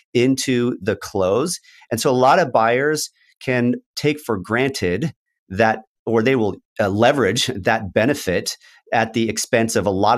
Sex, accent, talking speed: male, American, 160 wpm